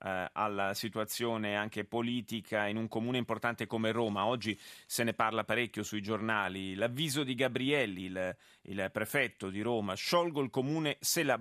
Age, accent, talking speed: 30-49, native, 160 wpm